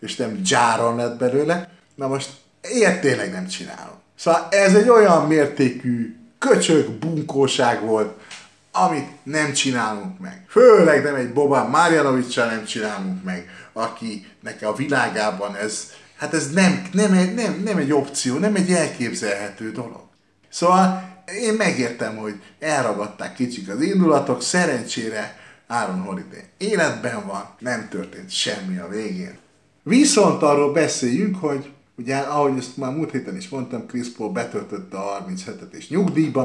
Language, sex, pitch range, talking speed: Hungarian, male, 115-170 Hz, 140 wpm